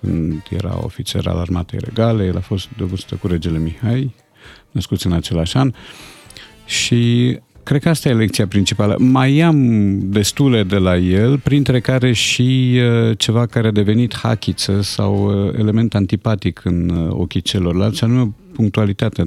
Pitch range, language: 90-115 Hz, Romanian